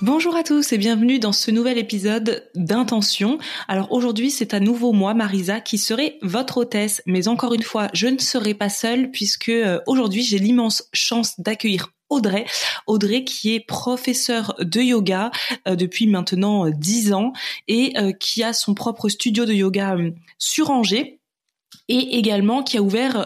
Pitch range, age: 200-240 Hz, 20-39